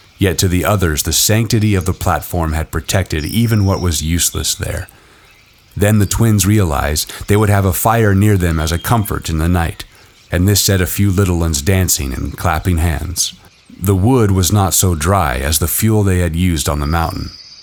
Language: English